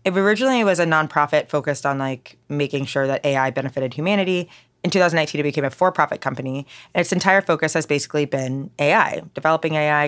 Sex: female